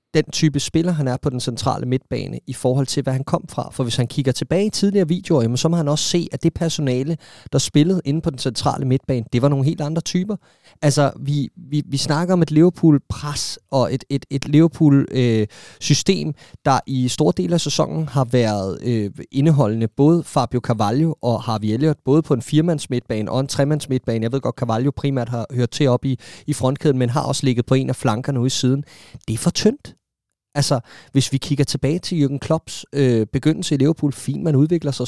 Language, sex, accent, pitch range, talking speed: Danish, male, native, 125-155 Hz, 220 wpm